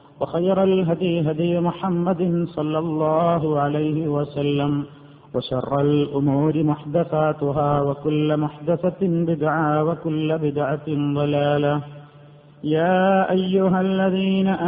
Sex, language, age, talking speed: male, Malayalam, 50-69, 85 wpm